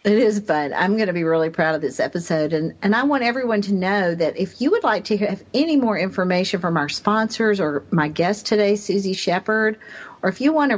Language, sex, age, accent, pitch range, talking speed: English, female, 50-69, American, 175-230 Hz, 240 wpm